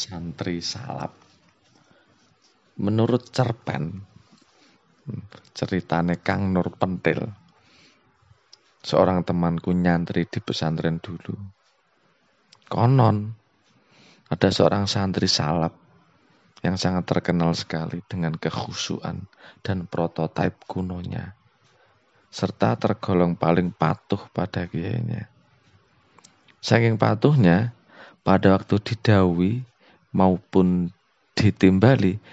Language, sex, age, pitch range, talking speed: English, male, 30-49, 85-110 Hz, 75 wpm